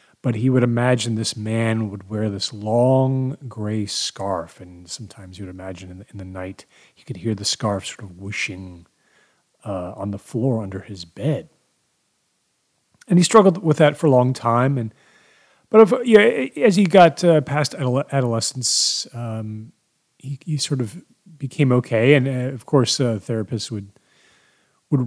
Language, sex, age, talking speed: English, male, 30-49, 170 wpm